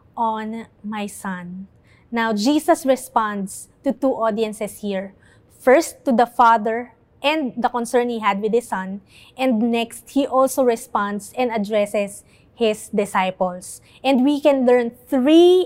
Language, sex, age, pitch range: English, female, 20-39, 220-280 Hz